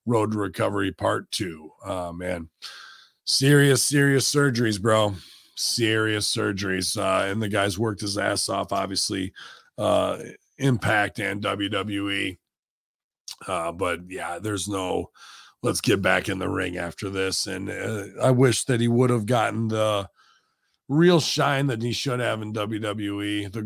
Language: English